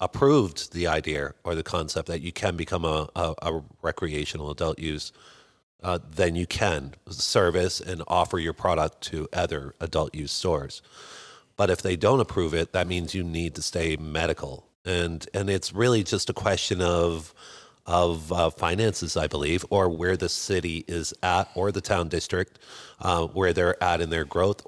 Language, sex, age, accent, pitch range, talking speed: English, male, 40-59, American, 85-100 Hz, 175 wpm